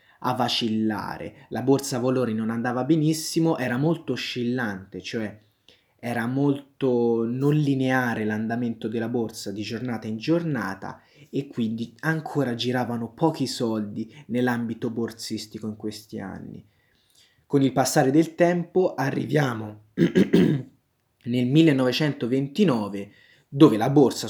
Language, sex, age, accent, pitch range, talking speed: Italian, male, 20-39, native, 110-135 Hz, 110 wpm